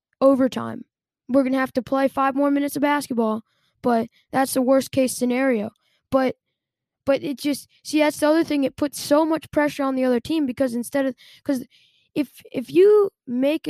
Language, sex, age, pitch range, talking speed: English, female, 10-29, 240-285 Hz, 195 wpm